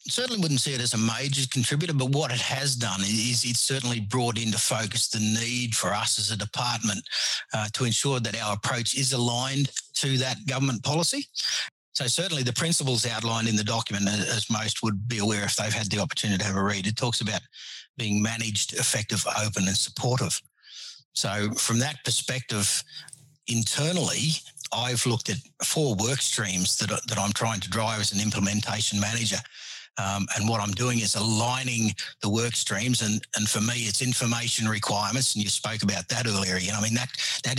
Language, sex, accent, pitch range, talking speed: English, male, Australian, 105-125 Hz, 190 wpm